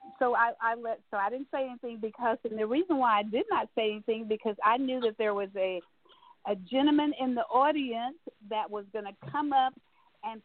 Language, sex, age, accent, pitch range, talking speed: English, female, 50-69, American, 205-260 Hz, 220 wpm